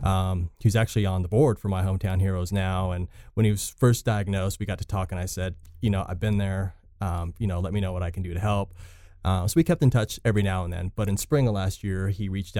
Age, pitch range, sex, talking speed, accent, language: 30-49, 95-110 Hz, male, 280 wpm, American, English